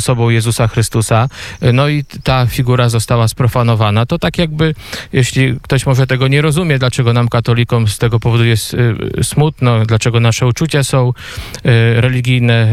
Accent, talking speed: native, 145 wpm